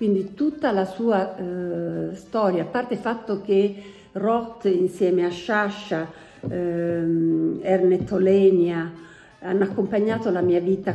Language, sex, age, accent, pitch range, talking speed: Italian, female, 50-69, native, 180-220 Hz, 125 wpm